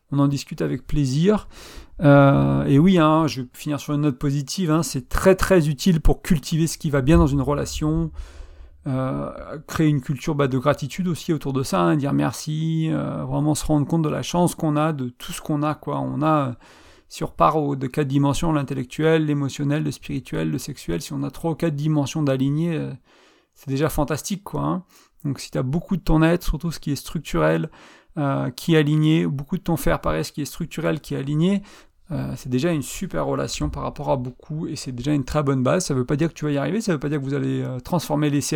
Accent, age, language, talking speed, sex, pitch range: French, 40-59, French, 235 wpm, male, 135-160 Hz